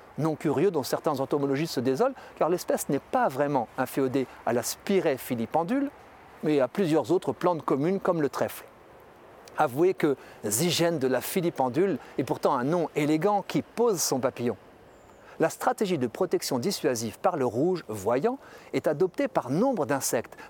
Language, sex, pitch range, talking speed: French, male, 140-205 Hz, 160 wpm